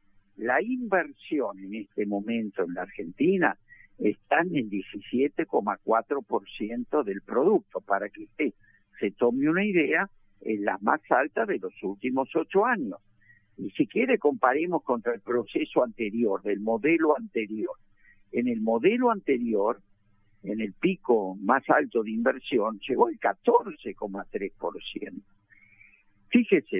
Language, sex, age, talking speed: Spanish, male, 60-79, 125 wpm